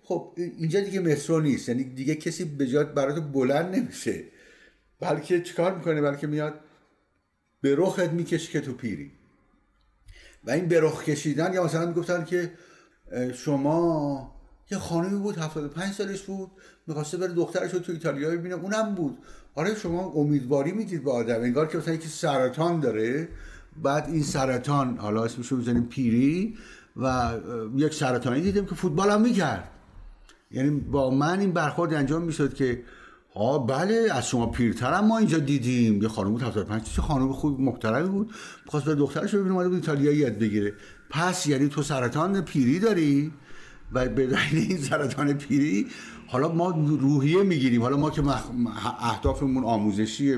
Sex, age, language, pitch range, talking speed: male, 60-79, Persian, 125-175 Hz, 155 wpm